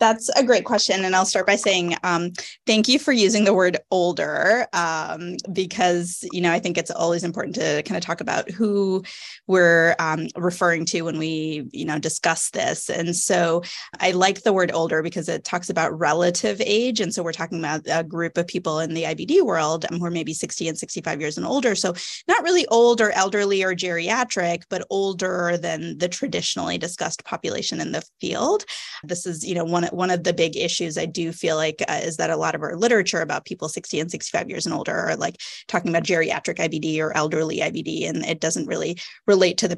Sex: female